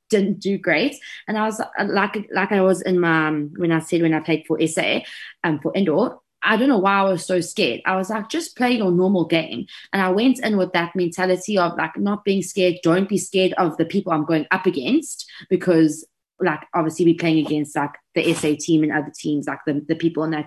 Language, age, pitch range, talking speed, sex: English, 20-39, 165-205 Hz, 240 wpm, female